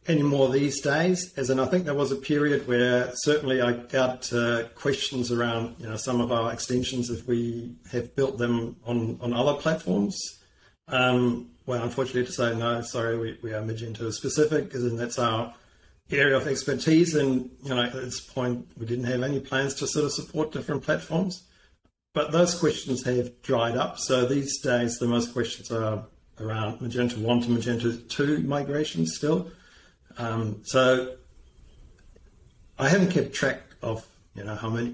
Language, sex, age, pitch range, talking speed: English, male, 40-59, 115-130 Hz, 175 wpm